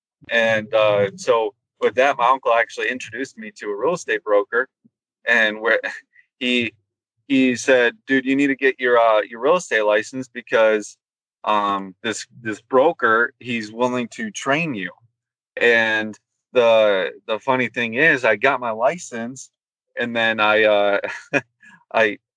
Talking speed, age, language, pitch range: 150 wpm, 30-49, English, 110-135 Hz